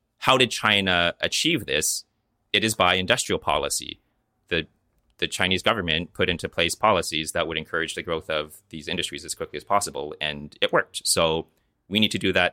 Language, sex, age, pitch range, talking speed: English, male, 30-49, 85-105 Hz, 185 wpm